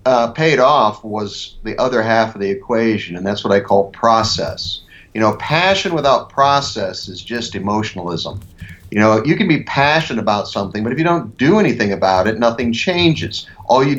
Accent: American